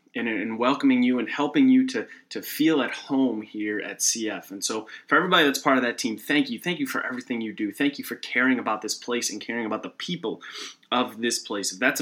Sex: male